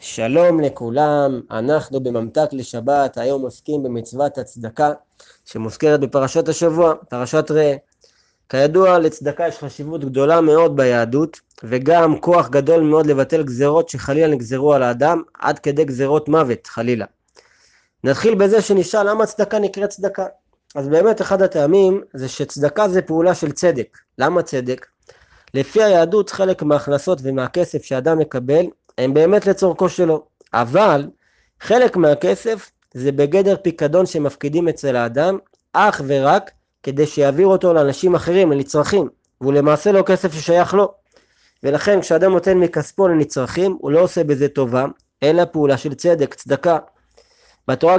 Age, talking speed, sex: 20-39, 130 wpm, male